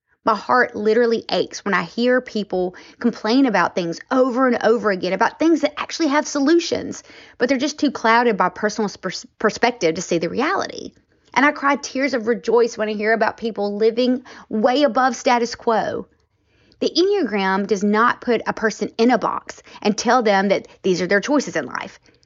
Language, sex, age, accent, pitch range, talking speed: English, female, 30-49, American, 195-250 Hz, 185 wpm